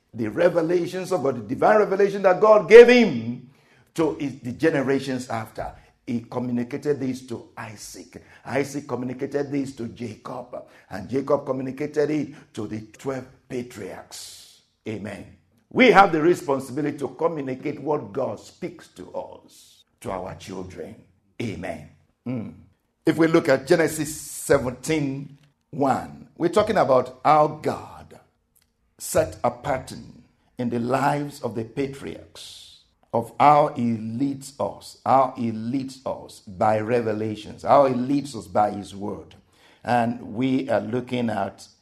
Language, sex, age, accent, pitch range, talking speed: English, male, 50-69, Nigerian, 110-150 Hz, 135 wpm